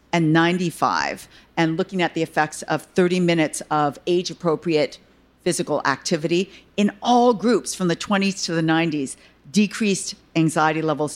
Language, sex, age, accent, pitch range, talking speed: English, female, 50-69, American, 155-195 Hz, 140 wpm